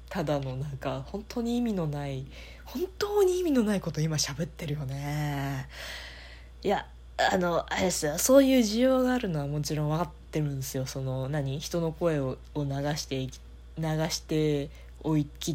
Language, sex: Japanese, female